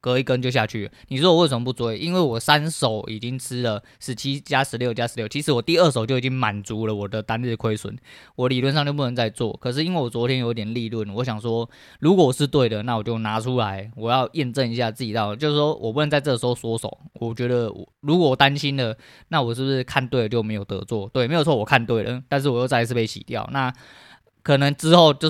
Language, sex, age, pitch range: Chinese, male, 20-39, 115-140 Hz